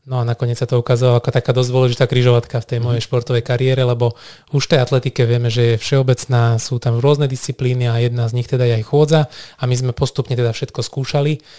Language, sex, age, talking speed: Slovak, male, 20-39, 230 wpm